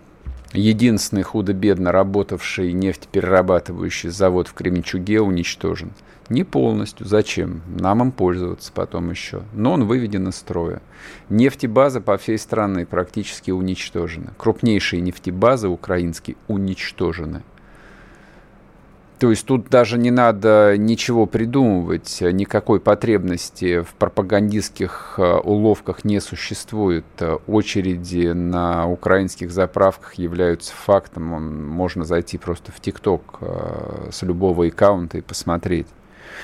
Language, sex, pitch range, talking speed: Russian, male, 85-105 Hz, 100 wpm